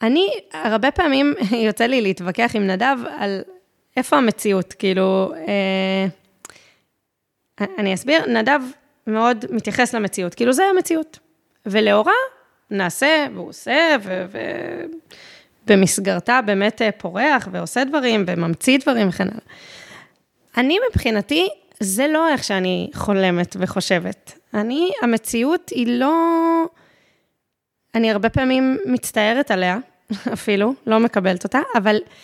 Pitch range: 195-265 Hz